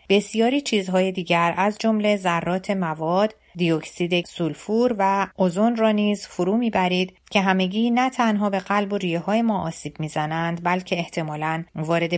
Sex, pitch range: female, 165-210 Hz